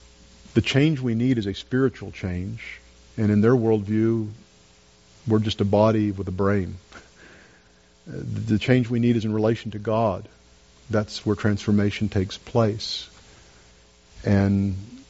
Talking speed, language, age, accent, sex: 135 wpm, English, 50-69, American, male